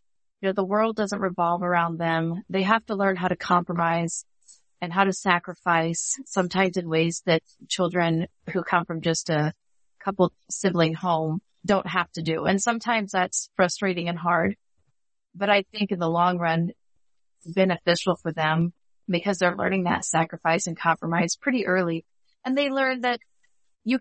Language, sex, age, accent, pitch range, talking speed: English, female, 30-49, American, 165-195 Hz, 165 wpm